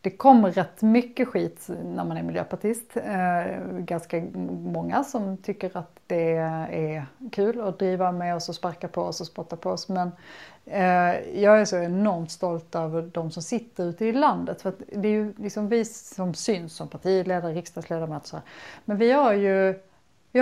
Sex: female